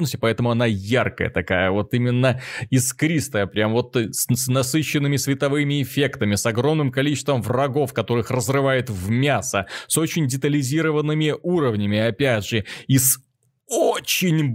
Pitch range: 120-150 Hz